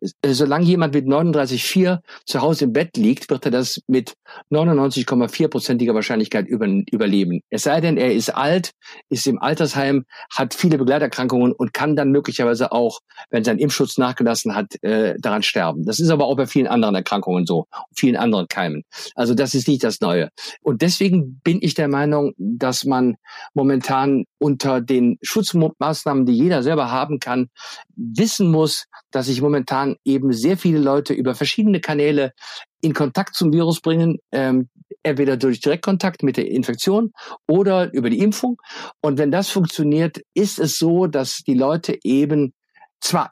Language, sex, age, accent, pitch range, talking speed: German, male, 50-69, German, 130-170 Hz, 160 wpm